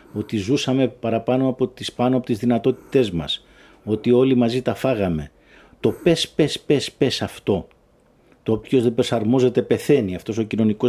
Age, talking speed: 50-69, 150 wpm